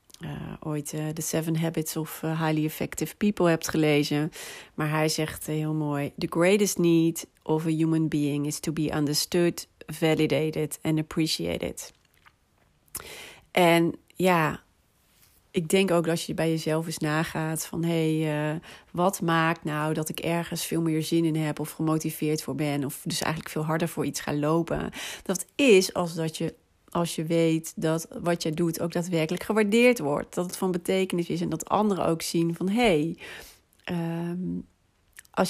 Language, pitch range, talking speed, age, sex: Dutch, 155-180 Hz, 170 wpm, 40-59, female